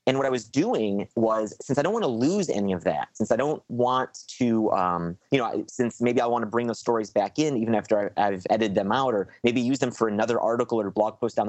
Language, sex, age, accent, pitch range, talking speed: English, male, 30-49, American, 105-140 Hz, 260 wpm